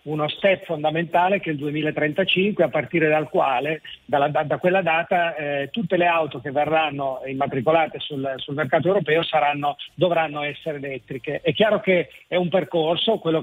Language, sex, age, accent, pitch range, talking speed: Italian, male, 40-59, native, 150-175 Hz, 160 wpm